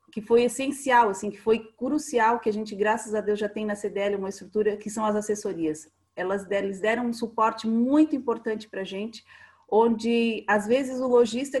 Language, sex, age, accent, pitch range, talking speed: Portuguese, female, 30-49, Brazilian, 205-240 Hz, 190 wpm